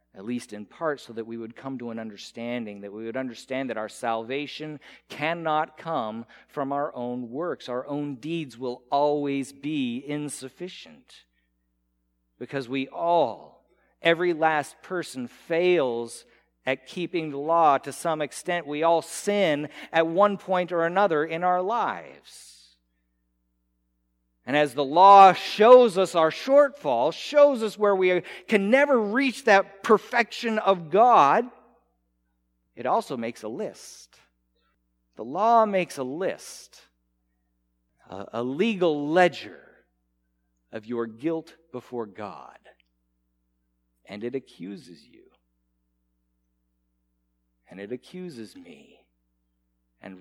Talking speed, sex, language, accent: 125 wpm, male, English, American